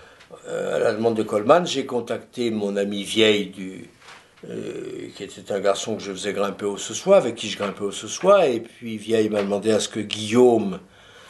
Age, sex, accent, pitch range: 60-79, male, French, 95-125 Hz